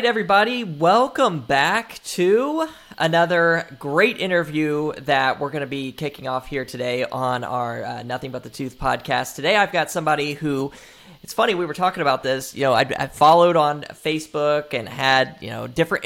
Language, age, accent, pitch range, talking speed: English, 20-39, American, 135-175 Hz, 180 wpm